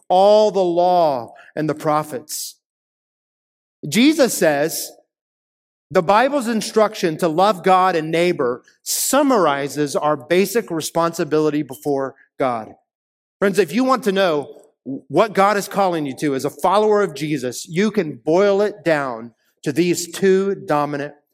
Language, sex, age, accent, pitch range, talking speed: English, male, 30-49, American, 140-200 Hz, 135 wpm